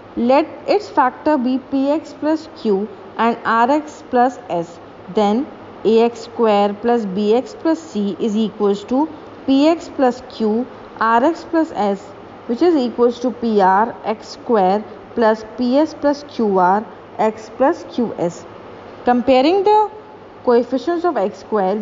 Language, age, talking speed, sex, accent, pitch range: English, 20-39, 130 wpm, female, Indian, 215-280 Hz